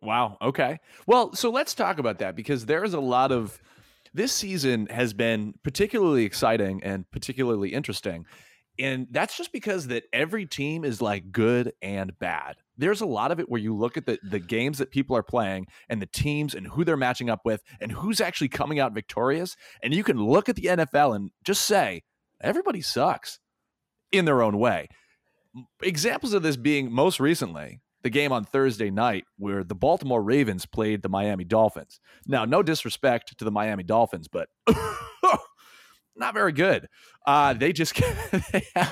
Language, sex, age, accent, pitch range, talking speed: English, male, 30-49, American, 110-150 Hz, 180 wpm